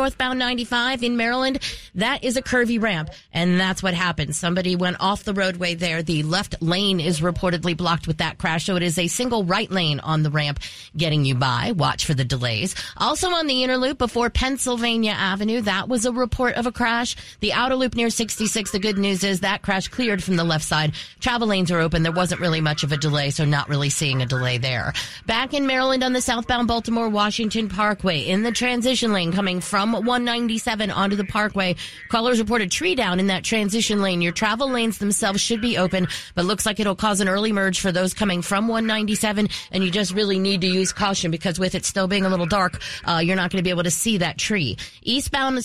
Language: English